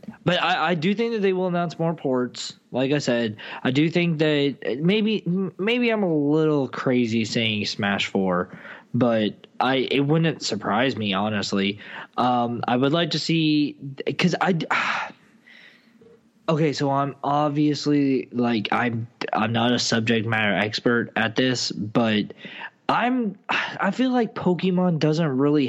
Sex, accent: male, American